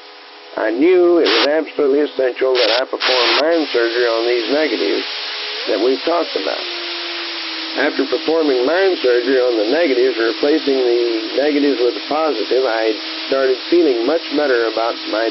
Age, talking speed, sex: 50-69, 150 wpm, male